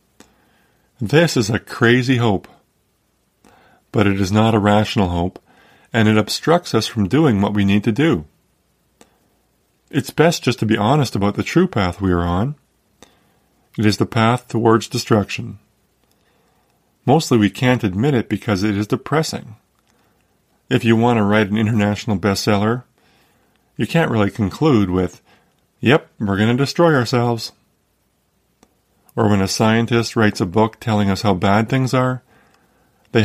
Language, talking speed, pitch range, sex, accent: English, 150 wpm, 100-120 Hz, male, American